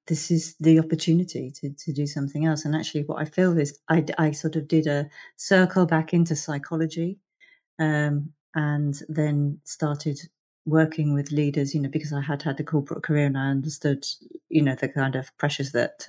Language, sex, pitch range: English, female, 140-160 Hz